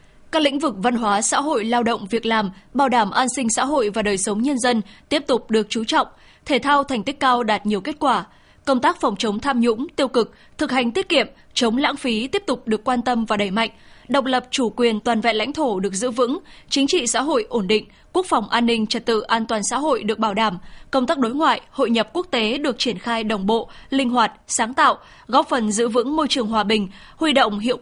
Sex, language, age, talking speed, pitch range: female, Vietnamese, 20-39, 250 wpm, 225-275 Hz